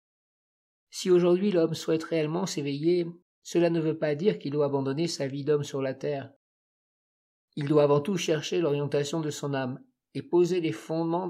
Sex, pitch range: male, 140-165 Hz